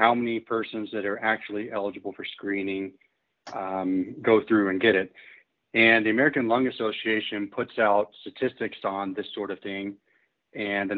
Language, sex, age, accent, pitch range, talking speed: English, male, 40-59, American, 100-115 Hz, 165 wpm